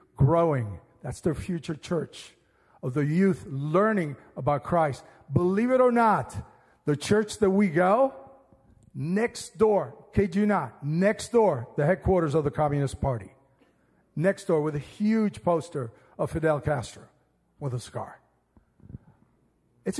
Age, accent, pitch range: 50-69, American, 140-200 Hz